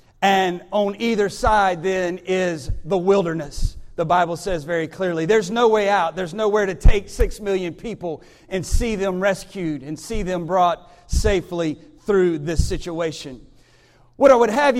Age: 40-59